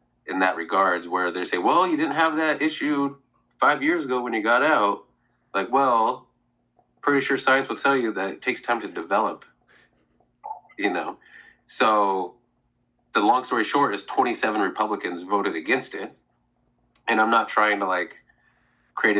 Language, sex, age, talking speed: English, male, 30-49, 165 wpm